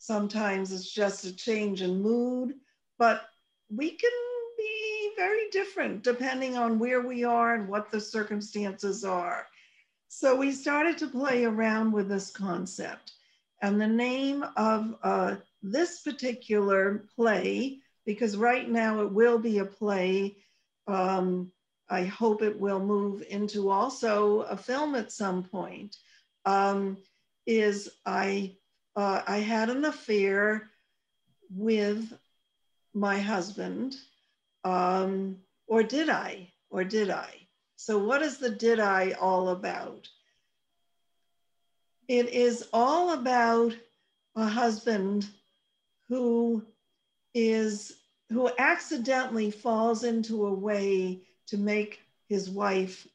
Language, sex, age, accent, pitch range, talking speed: English, female, 60-79, American, 195-240 Hz, 120 wpm